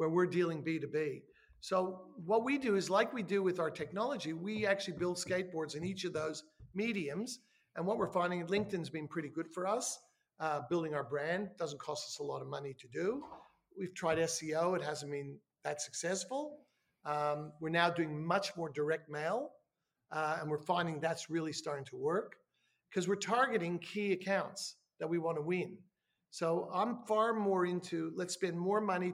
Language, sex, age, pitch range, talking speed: English, male, 50-69, 160-195 Hz, 185 wpm